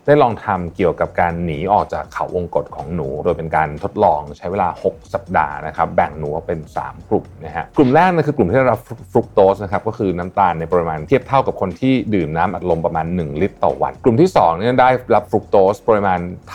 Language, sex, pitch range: Thai, male, 85-110 Hz